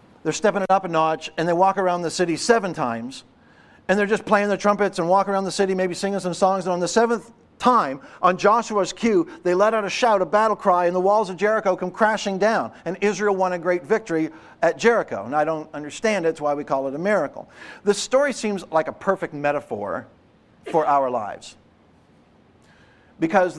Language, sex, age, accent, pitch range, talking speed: English, male, 50-69, American, 155-200 Hz, 215 wpm